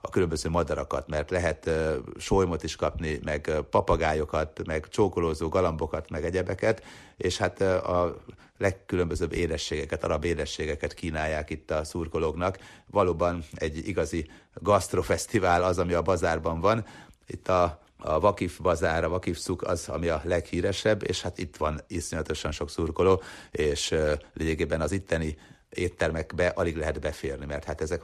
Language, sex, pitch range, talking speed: Hungarian, male, 75-85 Hz, 145 wpm